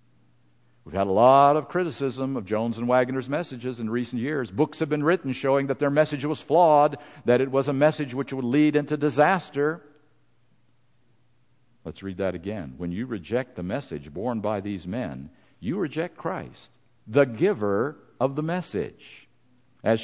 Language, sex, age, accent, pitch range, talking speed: English, male, 50-69, American, 115-150 Hz, 170 wpm